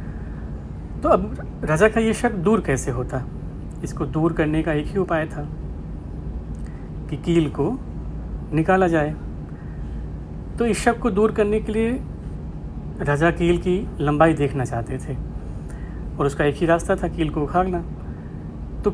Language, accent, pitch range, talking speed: Hindi, native, 125-180 Hz, 150 wpm